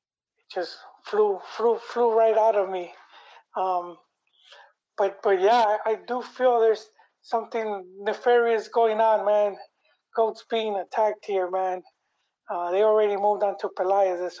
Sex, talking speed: male, 145 wpm